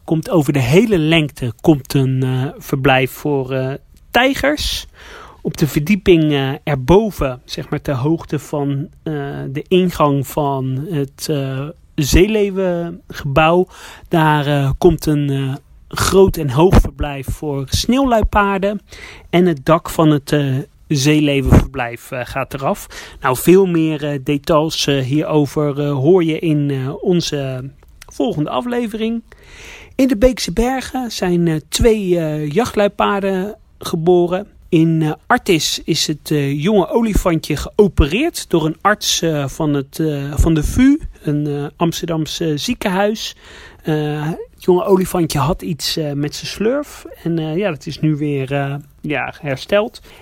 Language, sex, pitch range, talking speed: Dutch, male, 145-190 Hz, 140 wpm